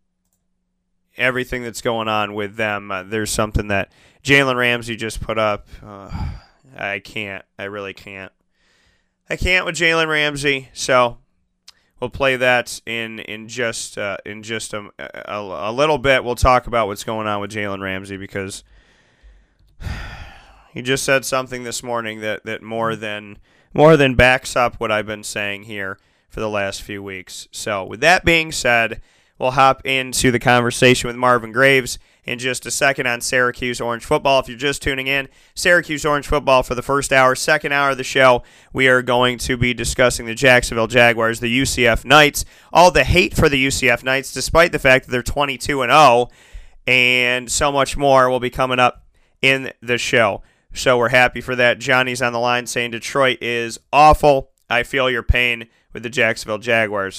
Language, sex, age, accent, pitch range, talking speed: English, male, 30-49, American, 110-130 Hz, 180 wpm